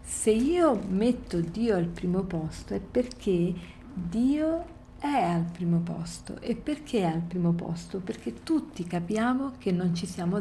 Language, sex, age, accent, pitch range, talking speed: Italian, female, 50-69, native, 170-220 Hz, 155 wpm